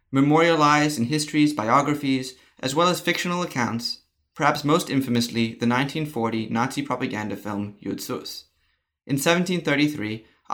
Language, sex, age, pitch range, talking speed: English, male, 20-39, 115-145 Hz, 115 wpm